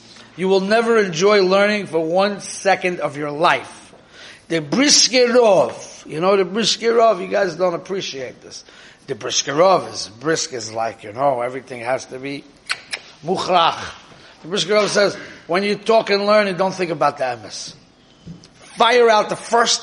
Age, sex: 30-49, male